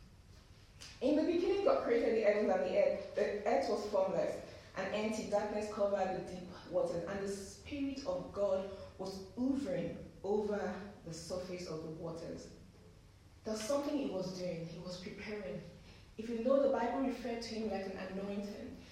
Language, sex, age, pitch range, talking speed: English, female, 20-39, 200-270 Hz, 170 wpm